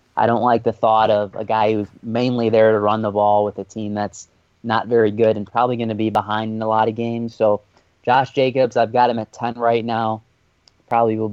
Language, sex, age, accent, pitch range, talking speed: English, male, 20-39, American, 105-125 Hz, 240 wpm